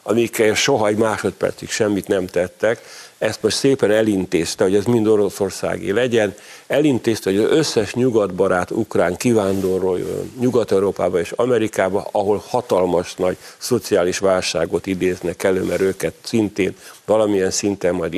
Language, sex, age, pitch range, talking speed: Hungarian, male, 50-69, 95-125 Hz, 130 wpm